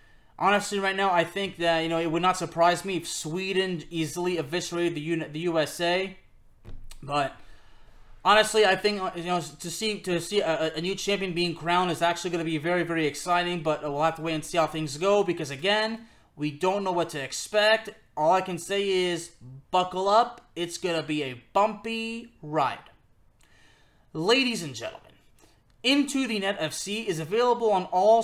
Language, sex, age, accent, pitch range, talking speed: English, male, 20-39, American, 155-195 Hz, 185 wpm